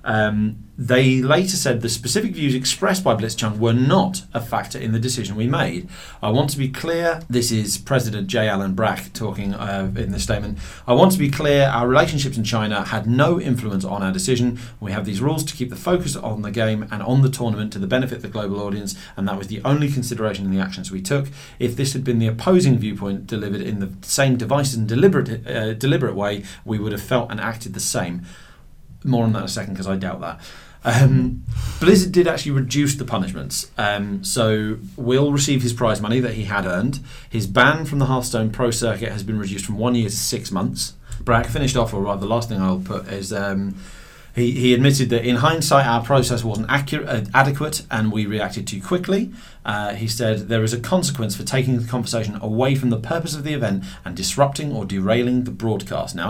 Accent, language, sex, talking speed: British, English, male, 220 wpm